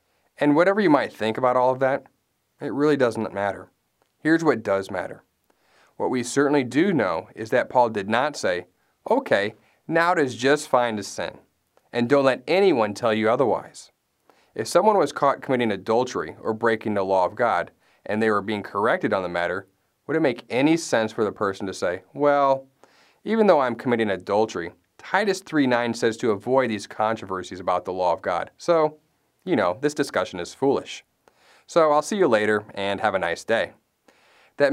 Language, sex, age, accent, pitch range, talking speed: English, male, 30-49, American, 105-140 Hz, 190 wpm